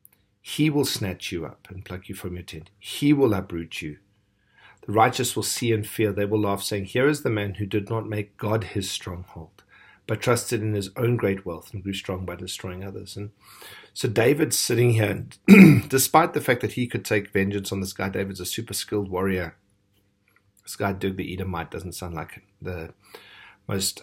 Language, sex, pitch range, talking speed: English, male, 90-110 Hz, 200 wpm